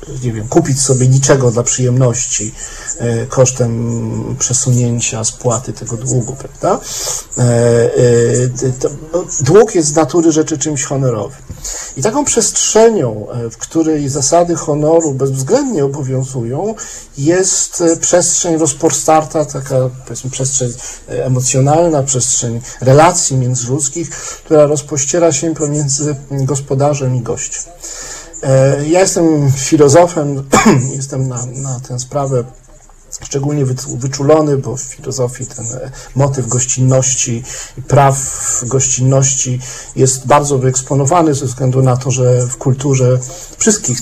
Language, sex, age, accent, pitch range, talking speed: Polish, male, 50-69, native, 125-150 Hz, 105 wpm